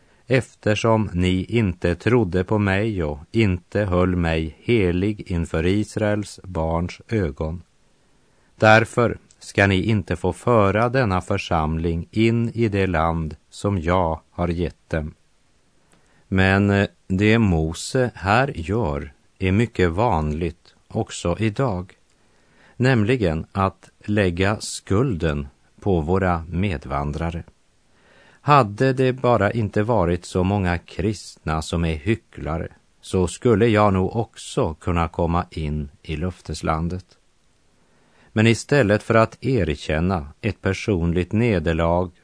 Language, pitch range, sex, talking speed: French, 85-110 Hz, male, 110 wpm